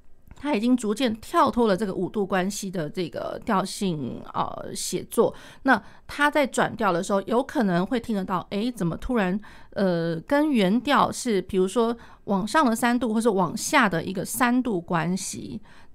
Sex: female